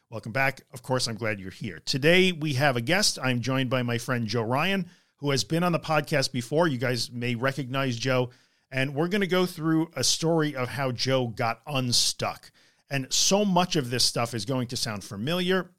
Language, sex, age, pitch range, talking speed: English, male, 50-69, 120-150 Hz, 215 wpm